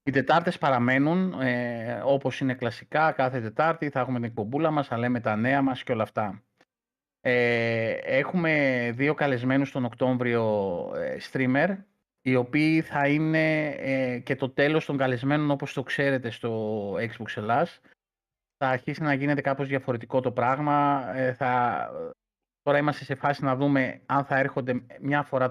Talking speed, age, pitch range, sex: 160 wpm, 30-49, 120-140 Hz, male